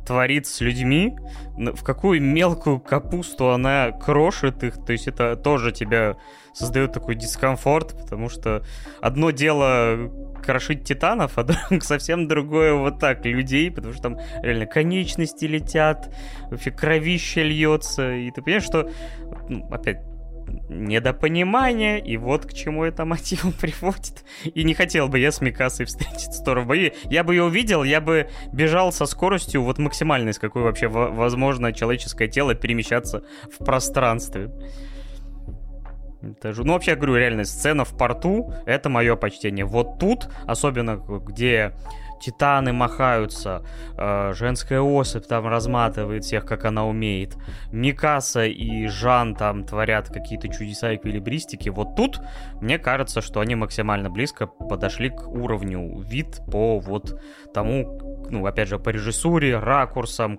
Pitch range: 110-150 Hz